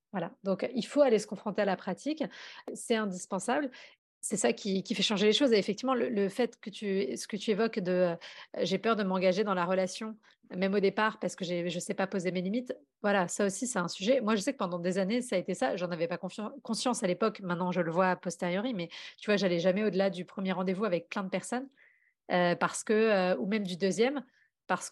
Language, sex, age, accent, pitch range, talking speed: French, female, 30-49, French, 190-245 Hz, 260 wpm